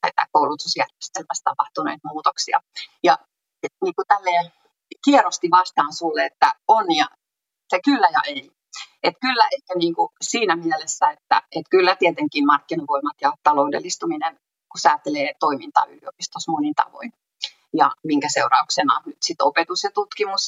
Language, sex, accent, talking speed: Finnish, female, native, 140 wpm